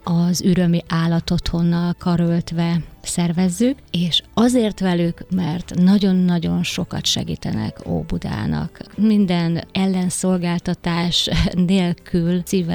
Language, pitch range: Hungarian, 150-185 Hz